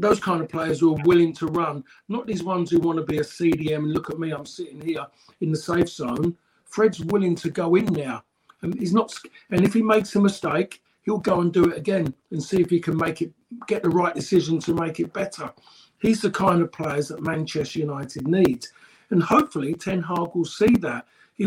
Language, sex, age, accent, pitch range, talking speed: English, male, 50-69, British, 160-195 Hz, 225 wpm